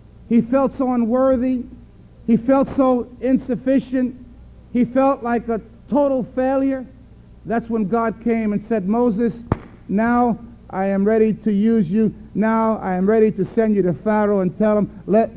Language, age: English, 50-69